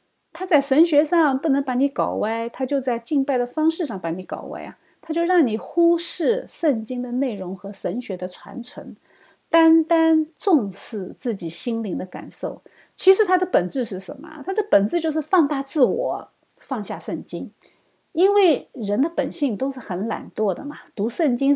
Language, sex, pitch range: Chinese, female, 205-315 Hz